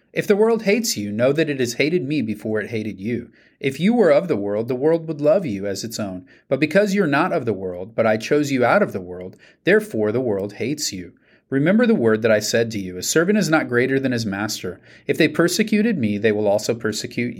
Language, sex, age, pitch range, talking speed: English, male, 30-49, 105-160 Hz, 255 wpm